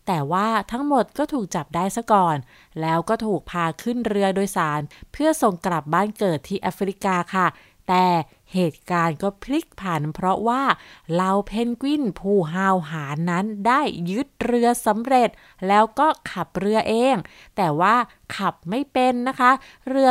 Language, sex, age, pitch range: Thai, female, 20-39, 180-245 Hz